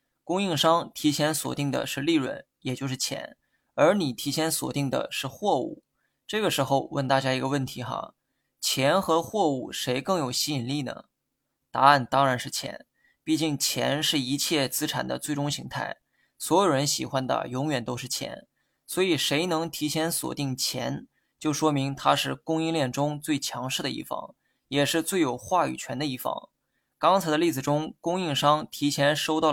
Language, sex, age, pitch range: Chinese, male, 20-39, 135-160 Hz